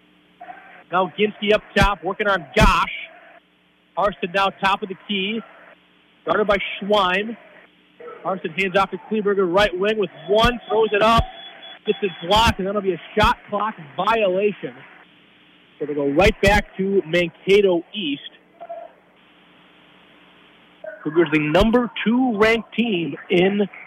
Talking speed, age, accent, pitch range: 135 wpm, 40-59, American, 155-205 Hz